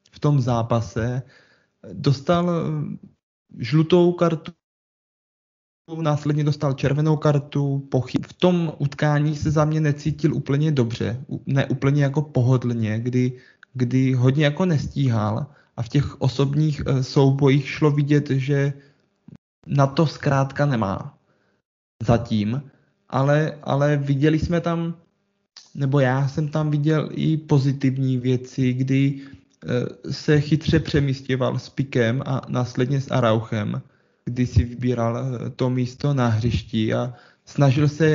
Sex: male